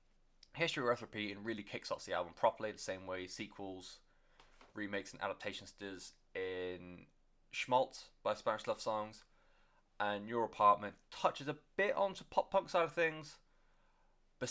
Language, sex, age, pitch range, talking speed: English, male, 20-39, 95-115 Hz, 145 wpm